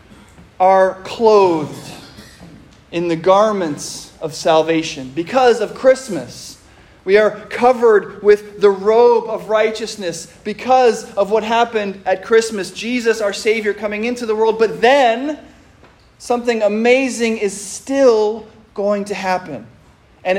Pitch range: 180-240 Hz